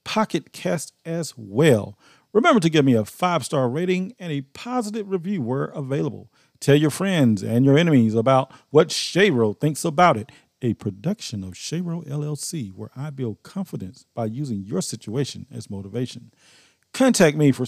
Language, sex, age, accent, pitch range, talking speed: English, male, 40-59, American, 125-175 Hz, 160 wpm